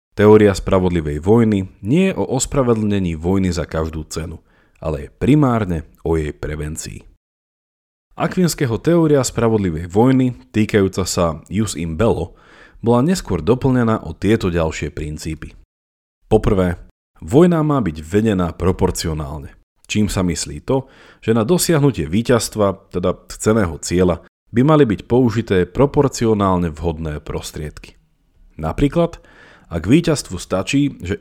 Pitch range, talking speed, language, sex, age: 85-120 Hz, 120 wpm, Slovak, male, 40-59